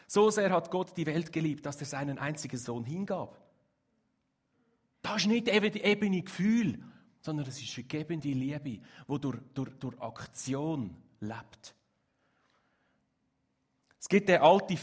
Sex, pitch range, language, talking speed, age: male, 120-185 Hz, German, 135 wpm, 30-49